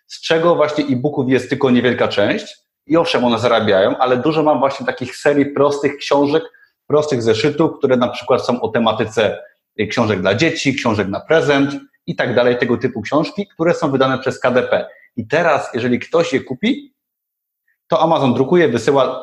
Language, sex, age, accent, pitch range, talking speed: Polish, male, 30-49, native, 115-150 Hz, 170 wpm